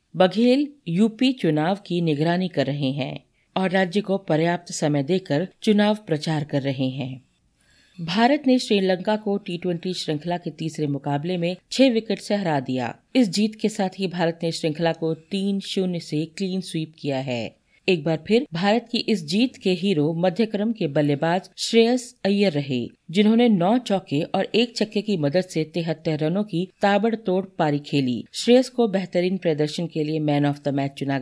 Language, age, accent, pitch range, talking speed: Hindi, 40-59, native, 155-205 Hz, 175 wpm